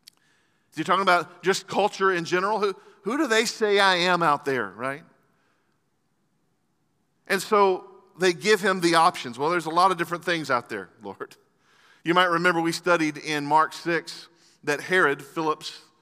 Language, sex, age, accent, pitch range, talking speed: English, male, 40-59, American, 150-185 Hz, 170 wpm